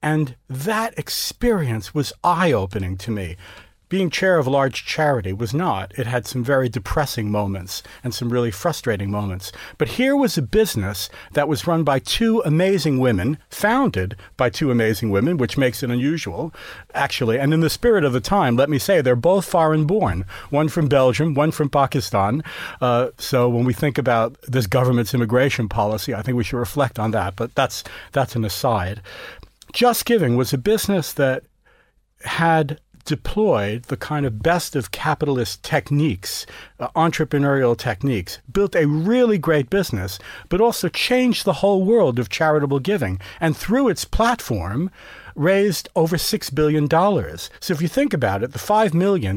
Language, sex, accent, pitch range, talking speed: English, male, American, 120-175 Hz, 170 wpm